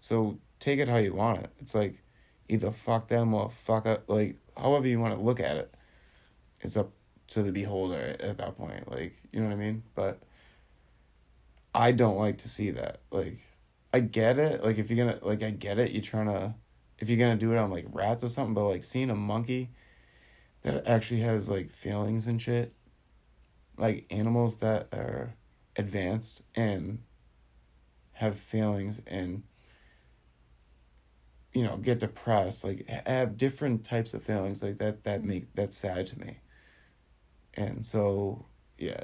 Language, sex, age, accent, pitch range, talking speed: English, male, 20-39, American, 100-115 Hz, 170 wpm